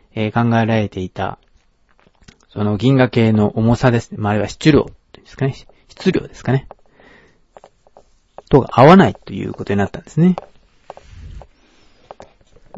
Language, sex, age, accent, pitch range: Japanese, male, 40-59, native, 100-135 Hz